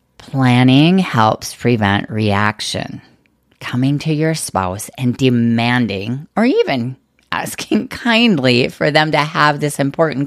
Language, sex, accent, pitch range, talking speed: English, female, American, 115-155 Hz, 115 wpm